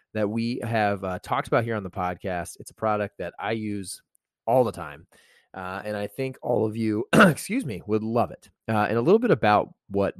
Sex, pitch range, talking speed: male, 95-120 Hz, 225 wpm